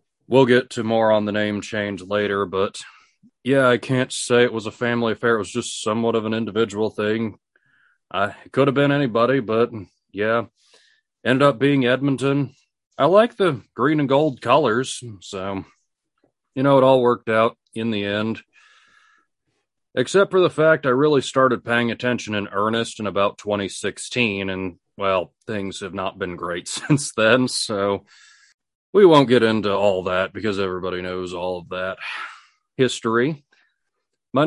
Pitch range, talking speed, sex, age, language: 105-140 Hz, 160 wpm, male, 30-49, English